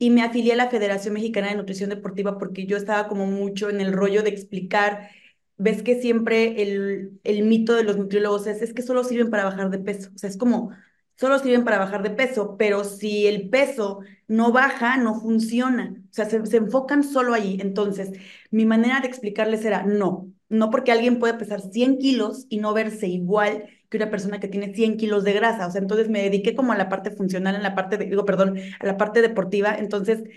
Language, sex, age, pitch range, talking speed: Spanish, female, 20-39, 195-230 Hz, 220 wpm